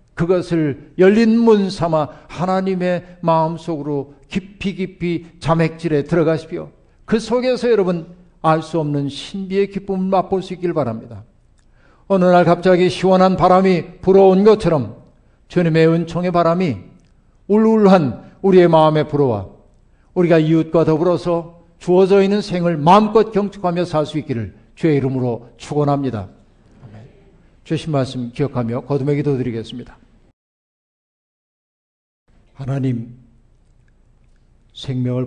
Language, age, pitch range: Korean, 50-69, 120-165 Hz